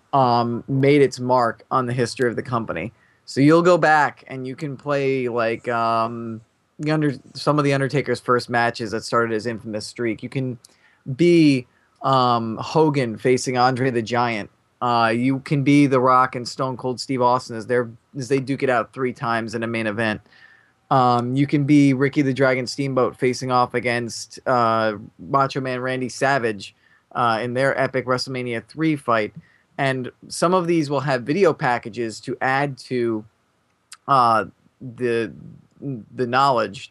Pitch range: 120-135 Hz